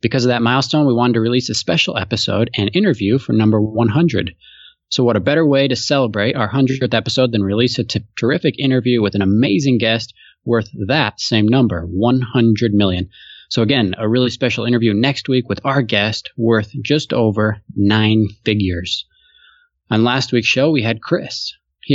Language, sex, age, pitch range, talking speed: English, male, 20-39, 105-130 Hz, 180 wpm